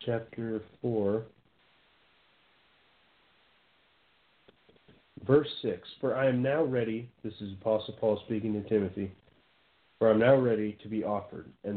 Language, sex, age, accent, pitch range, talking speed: English, male, 40-59, American, 105-135 Hz, 125 wpm